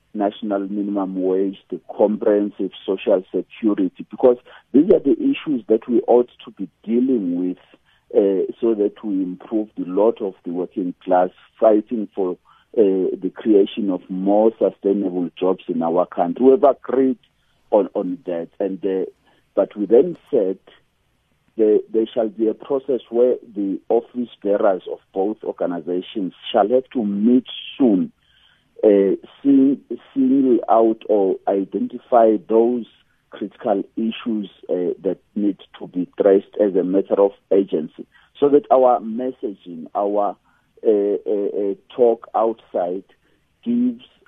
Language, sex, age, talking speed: English, male, 50-69, 135 wpm